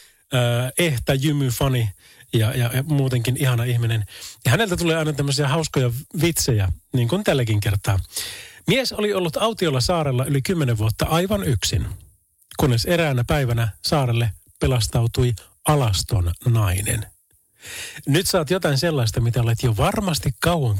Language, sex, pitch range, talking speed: Finnish, male, 110-160 Hz, 135 wpm